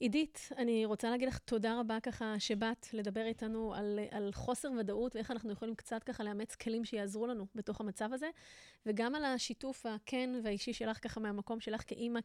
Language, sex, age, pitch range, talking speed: Hebrew, female, 30-49, 210-240 Hz, 180 wpm